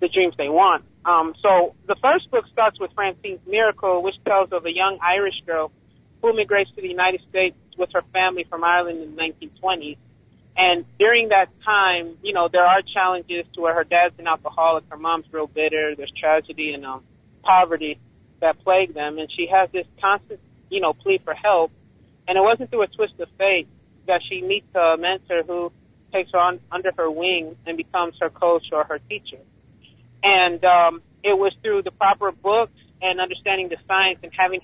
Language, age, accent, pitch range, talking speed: English, 40-59, American, 160-195 Hz, 190 wpm